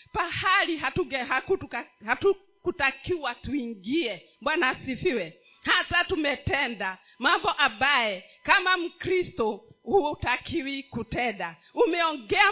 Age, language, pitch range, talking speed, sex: 40-59, Swahili, 240-365 Hz, 70 wpm, female